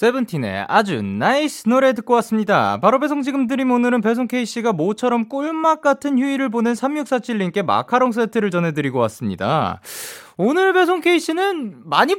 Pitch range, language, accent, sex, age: 165-245 Hz, Korean, native, male, 20-39